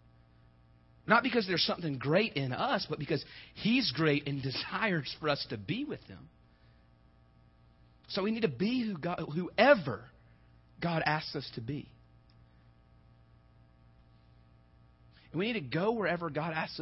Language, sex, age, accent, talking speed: English, male, 40-59, American, 145 wpm